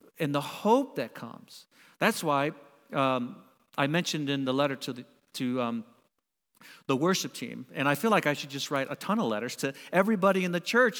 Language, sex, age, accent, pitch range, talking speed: English, male, 50-69, American, 135-190 Hz, 200 wpm